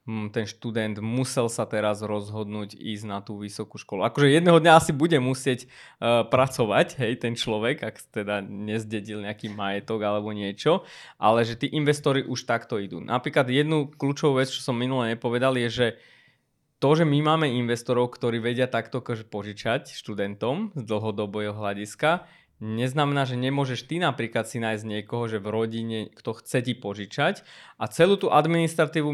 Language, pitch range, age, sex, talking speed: Slovak, 115-145 Hz, 20-39, male, 160 wpm